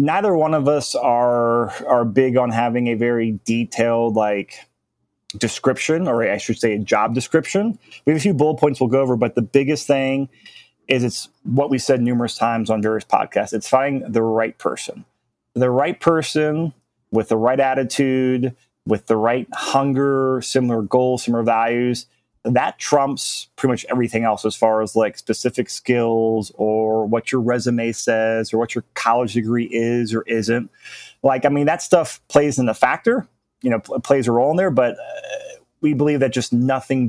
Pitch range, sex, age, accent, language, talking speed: 115-140 Hz, male, 30-49, American, English, 185 wpm